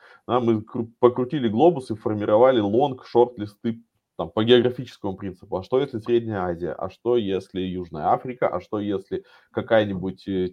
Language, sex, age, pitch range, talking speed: Russian, male, 20-39, 100-125 Hz, 135 wpm